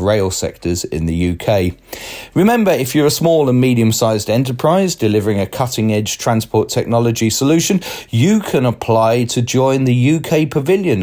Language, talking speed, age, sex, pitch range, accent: English, 145 wpm, 30-49, male, 100-135 Hz, British